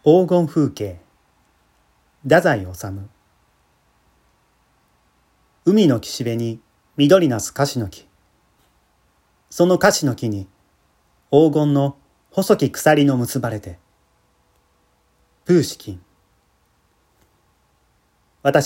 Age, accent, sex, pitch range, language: 40-59, native, male, 95-145 Hz, Japanese